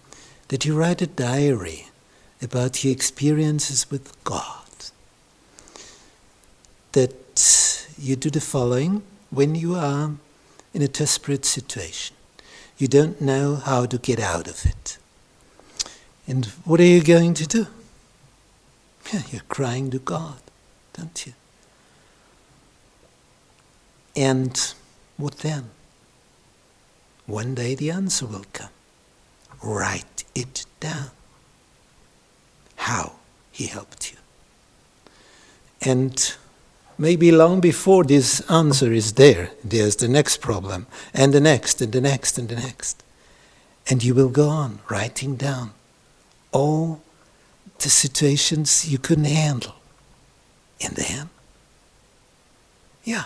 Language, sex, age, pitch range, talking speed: English, male, 60-79, 125-155 Hz, 110 wpm